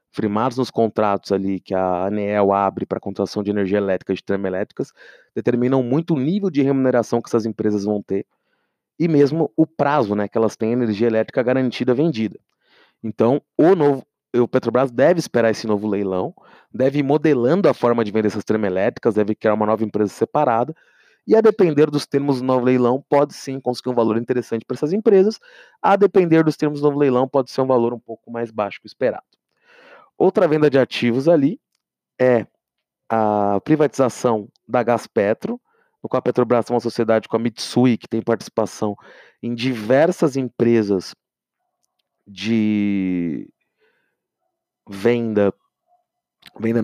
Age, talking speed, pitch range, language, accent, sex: 20-39, 165 wpm, 105-130 Hz, English, Brazilian, male